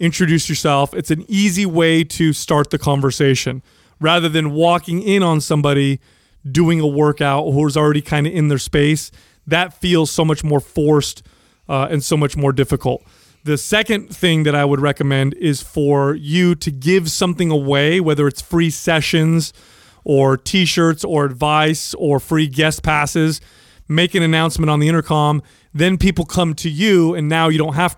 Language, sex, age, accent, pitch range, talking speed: English, male, 30-49, American, 145-170 Hz, 175 wpm